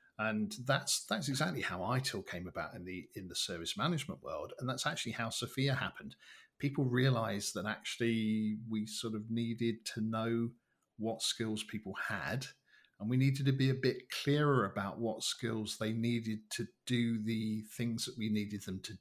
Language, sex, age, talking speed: English, male, 50-69, 180 wpm